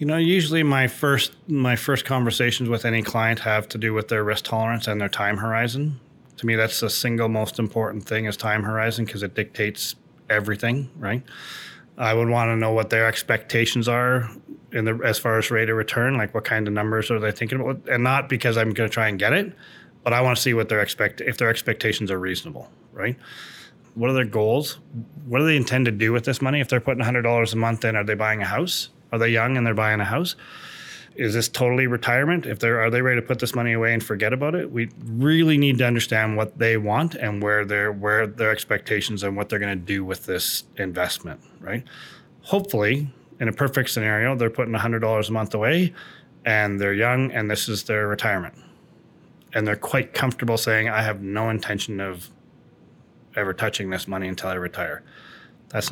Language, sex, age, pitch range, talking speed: English, male, 20-39, 110-125 Hz, 215 wpm